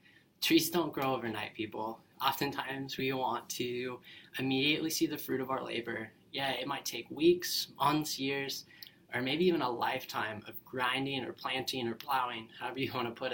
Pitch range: 120-155 Hz